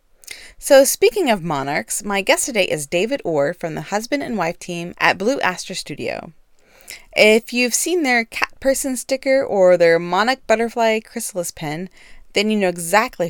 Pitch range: 170-235 Hz